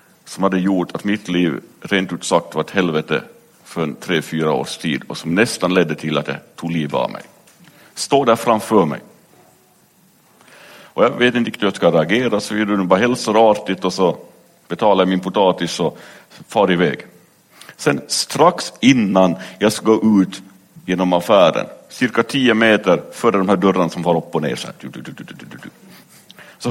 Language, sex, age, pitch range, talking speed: Swedish, male, 60-79, 95-115 Hz, 175 wpm